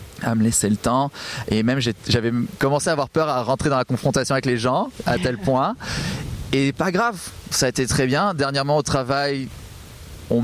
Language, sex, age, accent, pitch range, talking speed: French, male, 20-39, French, 115-135 Hz, 205 wpm